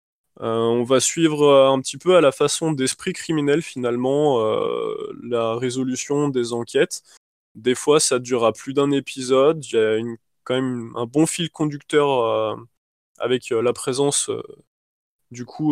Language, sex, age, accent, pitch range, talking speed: French, male, 20-39, French, 120-155 Hz, 165 wpm